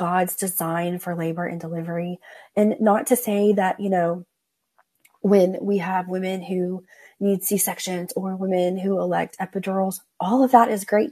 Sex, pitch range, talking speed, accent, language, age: female, 180-205 Hz, 160 wpm, American, English, 30-49